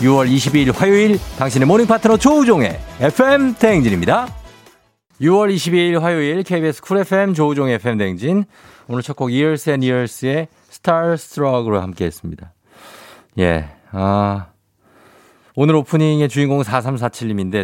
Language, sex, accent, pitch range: Korean, male, native, 100-150 Hz